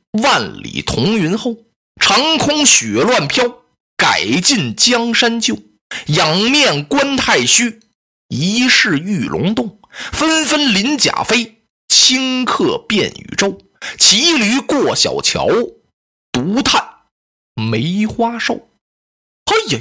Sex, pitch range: male, 180-255 Hz